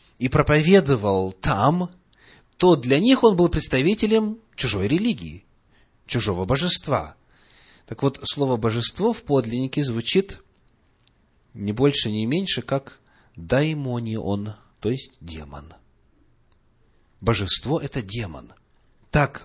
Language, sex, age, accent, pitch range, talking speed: Russian, male, 30-49, native, 100-150 Hz, 105 wpm